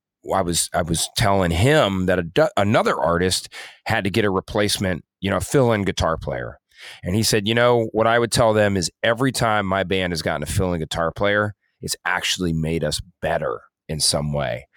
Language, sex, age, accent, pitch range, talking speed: English, male, 30-49, American, 90-115 Hz, 205 wpm